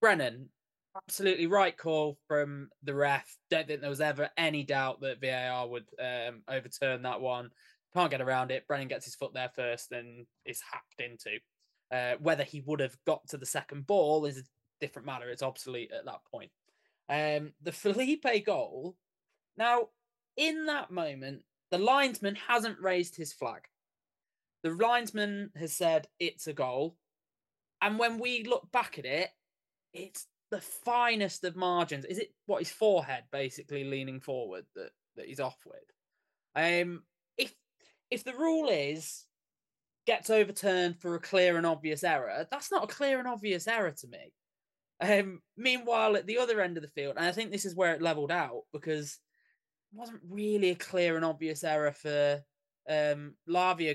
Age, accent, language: 20-39, British, English